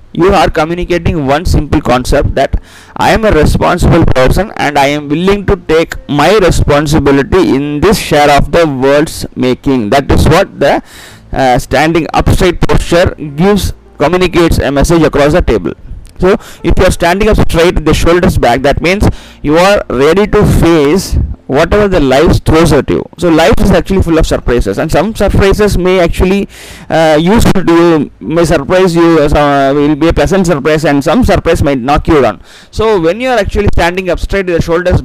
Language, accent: Tamil, native